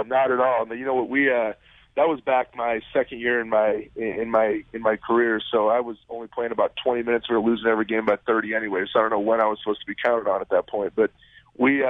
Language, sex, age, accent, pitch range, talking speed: English, male, 30-49, American, 110-125 Hz, 265 wpm